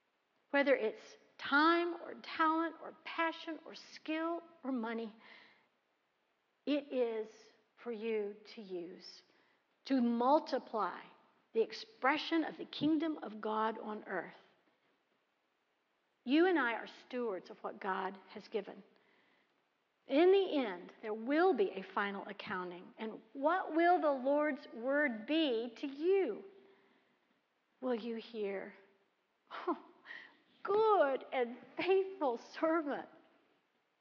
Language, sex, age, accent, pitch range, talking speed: English, female, 50-69, American, 220-320 Hz, 110 wpm